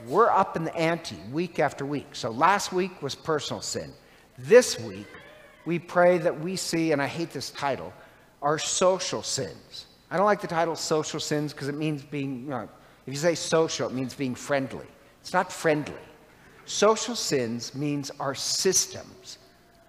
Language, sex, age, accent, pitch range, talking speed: English, male, 50-69, American, 145-195 Hz, 170 wpm